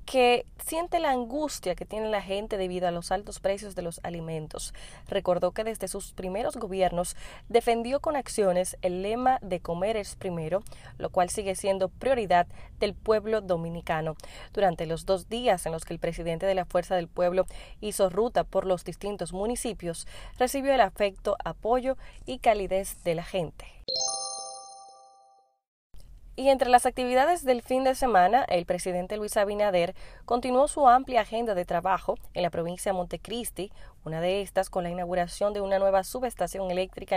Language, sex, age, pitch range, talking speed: Spanish, female, 20-39, 175-235 Hz, 165 wpm